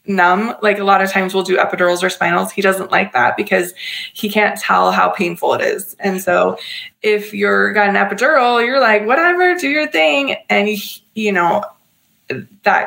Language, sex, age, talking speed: English, female, 20-39, 195 wpm